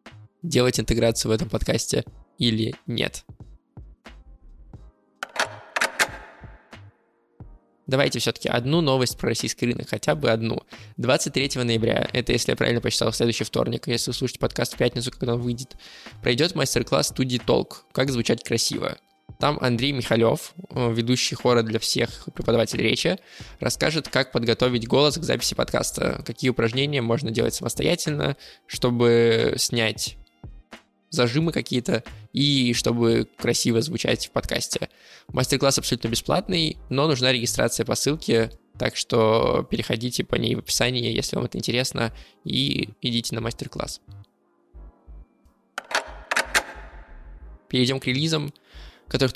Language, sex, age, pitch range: Russian, male, 20-39, 115-135 Hz